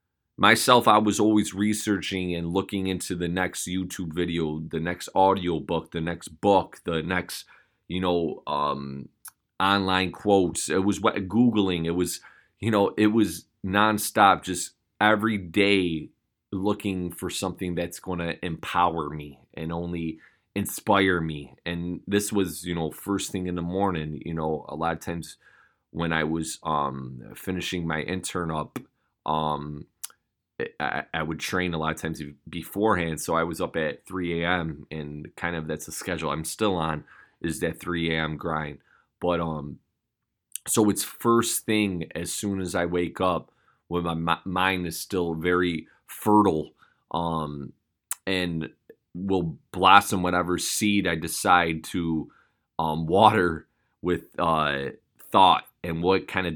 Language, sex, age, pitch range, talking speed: English, male, 30-49, 80-95 Hz, 150 wpm